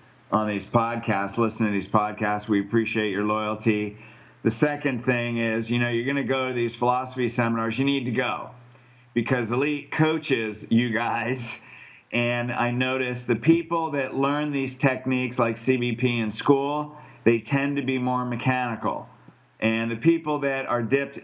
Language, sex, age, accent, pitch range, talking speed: English, male, 50-69, American, 115-140 Hz, 165 wpm